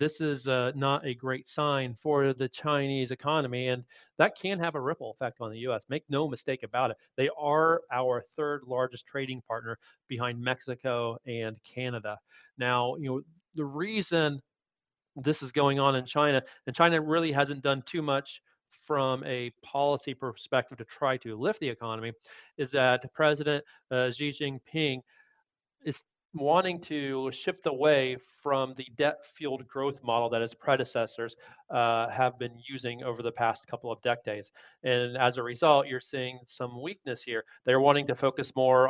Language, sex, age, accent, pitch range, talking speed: English, male, 40-59, American, 125-145 Hz, 170 wpm